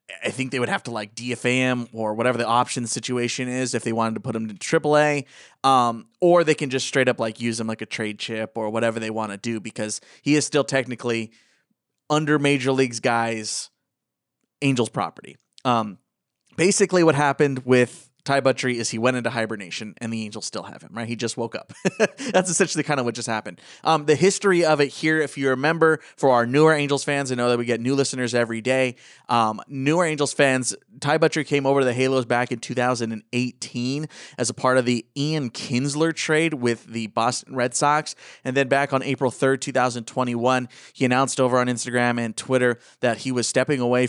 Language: English